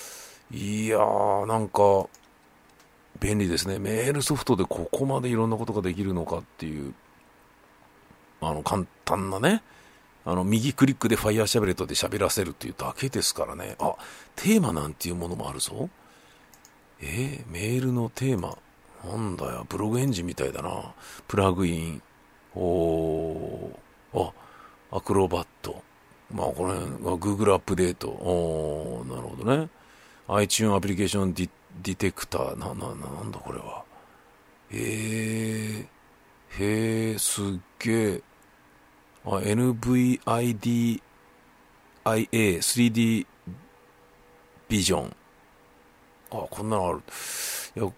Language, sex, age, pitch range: Japanese, male, 50-69, 85-110 Hz